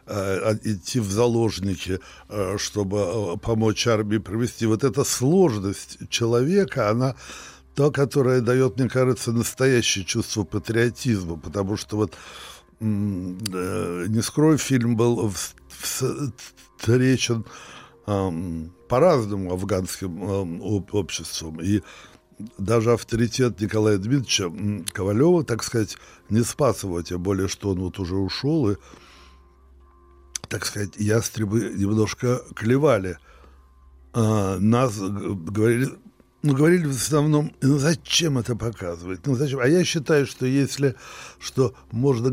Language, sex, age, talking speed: Russian, male, 60-79, 105 wpm